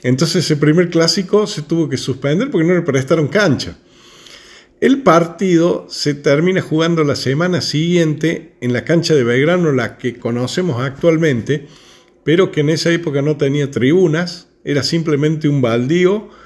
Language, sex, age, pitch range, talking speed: Spanish, male, 50-69, 125-170 Hz, 155 wpm